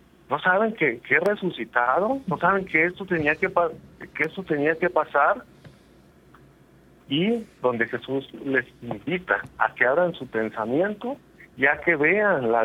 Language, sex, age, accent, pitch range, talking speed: Spanish, male, 40-59, Mexican, 135-185 Hz, 150 wpm